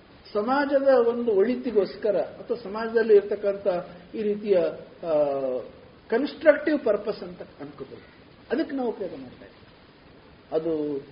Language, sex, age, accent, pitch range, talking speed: Kannada, male, 50-69, native, 185-265 Hz, 90 wpm